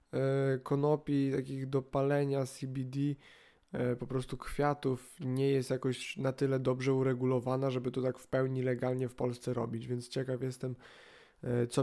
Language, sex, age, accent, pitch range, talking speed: Polish, male, 20-39, native, 120-135 Hz, 140 wpm